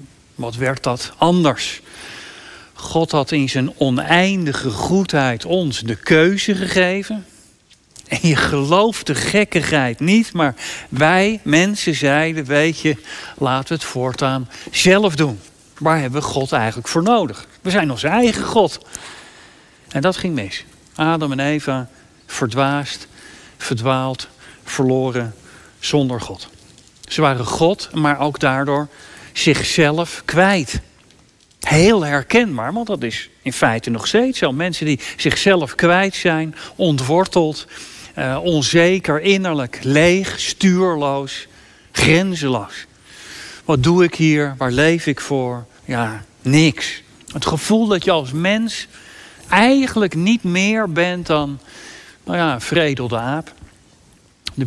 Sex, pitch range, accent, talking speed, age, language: male, 135-175 Hz, Dutch, 125 wpm, 50-69, Dutch